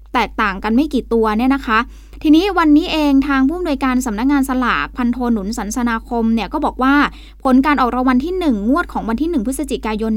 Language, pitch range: Thai, 230-285 Hz